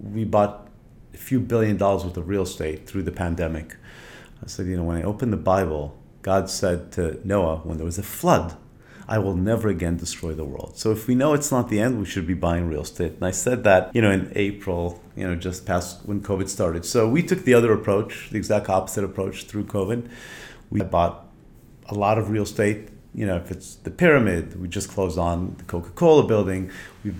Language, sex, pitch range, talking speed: English, male, 90-110 Hz, 220 wpm